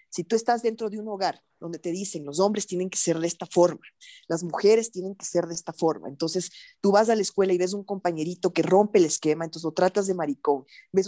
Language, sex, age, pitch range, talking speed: Spanish, female, 20-39, 170-210 Hz, 250 wpm